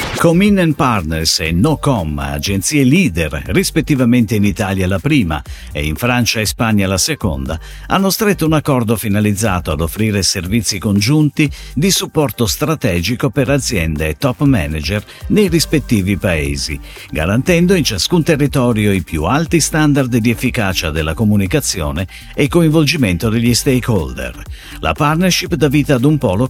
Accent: native